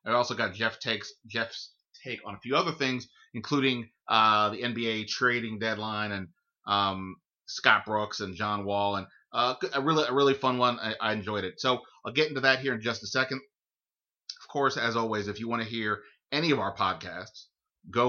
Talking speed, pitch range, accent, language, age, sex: 200 wpm, 105-130 Hz, American, English, 30-49, male